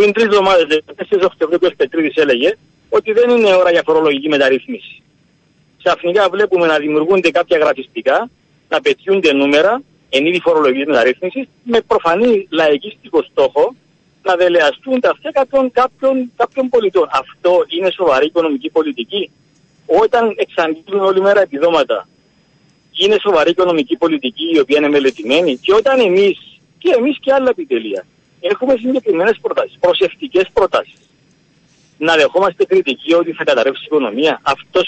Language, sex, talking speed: Greek, male, 130 wpm